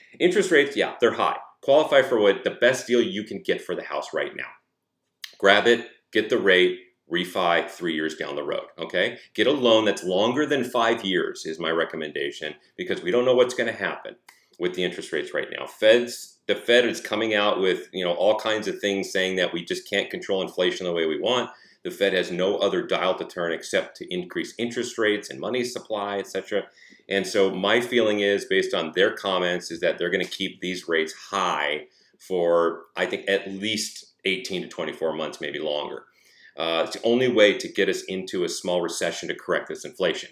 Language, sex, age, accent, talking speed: English, male, 40-59, American, 210 wpm